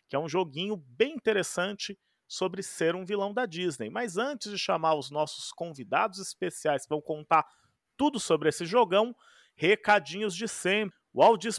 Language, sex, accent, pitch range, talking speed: Portuguese, male, Brazilian, 155-210 Hz, 165 wpm